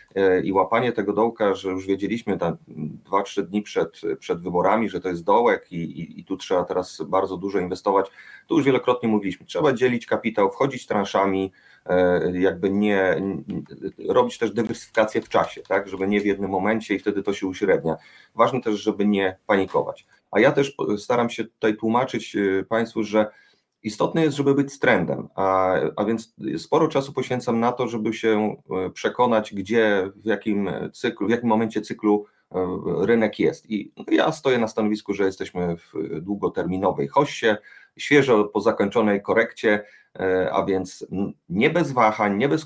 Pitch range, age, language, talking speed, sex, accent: 95-115 Hz, 30-49, Polish, 160 wpm, male, native